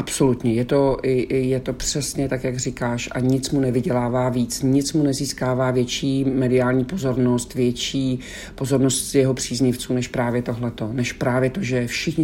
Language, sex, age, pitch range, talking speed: Czech, male, 50-69, 125-140 Hz, 150 wpm